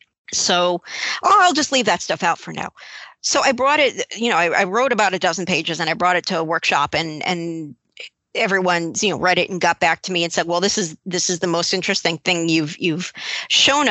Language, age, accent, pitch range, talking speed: English, 50-69, American, 170-210 Hz, 235 wpm